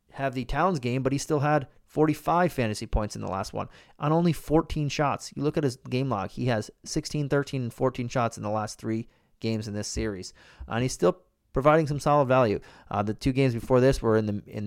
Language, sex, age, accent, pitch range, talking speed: English, male, 30-49, American, 110-130 Hz, 235 wpm